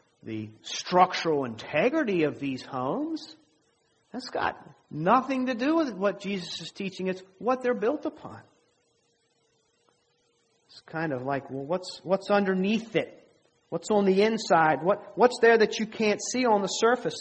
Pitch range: 145-215 Hz